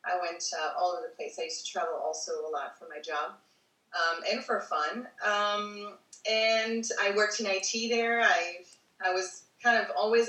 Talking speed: 200 wpm